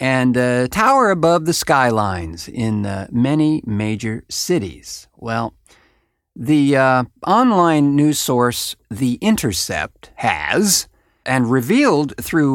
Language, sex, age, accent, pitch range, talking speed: English, male, 50-69, American, 110-160 Hz, 110 wpm